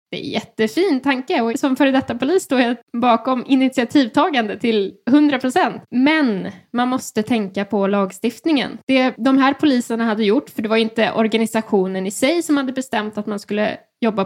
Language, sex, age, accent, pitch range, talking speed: English, female, 10-29, Swedish, 200-245 Hz, 175 wpm